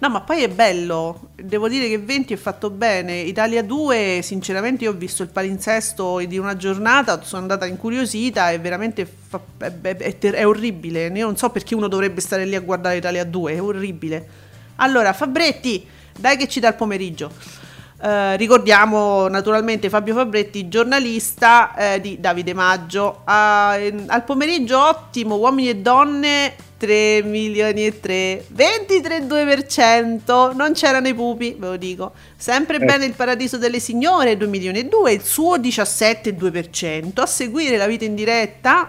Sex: female